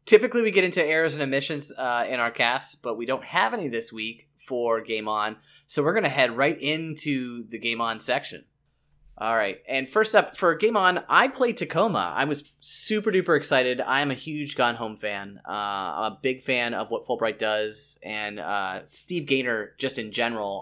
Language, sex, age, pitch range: English, male, 20-39, 110-145 Hz